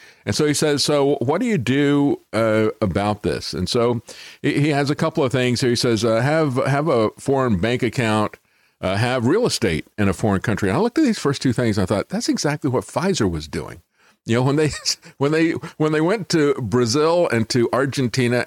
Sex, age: male, 50-69